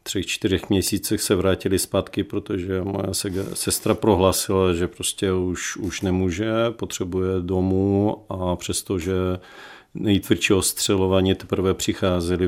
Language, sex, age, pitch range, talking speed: Czech, male, 50-69, 90-105 Hz, 110 wpm